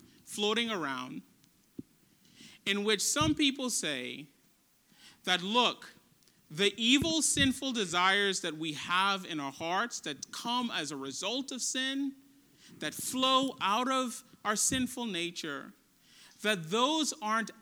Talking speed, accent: 125 wpm, American